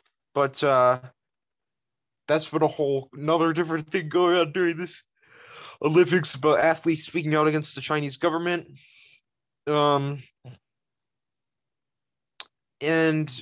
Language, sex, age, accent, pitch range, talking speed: English, male, 20-39, American, 130-155 Hz, 105 wpm